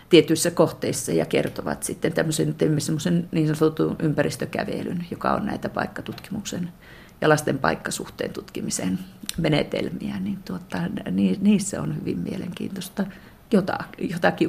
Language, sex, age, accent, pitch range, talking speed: Finnish, female, 40-59, native, 155-195 Hz, 110 wpm